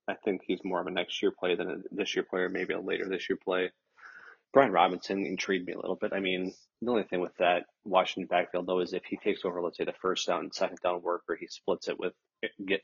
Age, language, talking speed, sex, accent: 30-49, English, 265 wpm, male, American